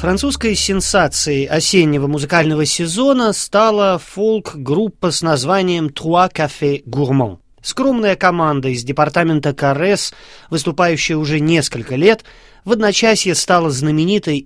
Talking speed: 100 wpm